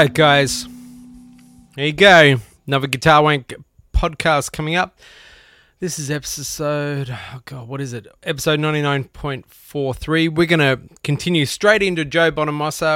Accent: Australian